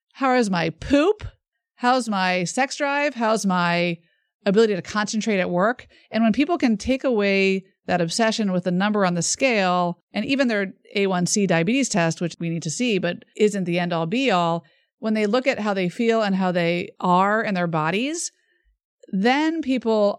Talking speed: 185 wpm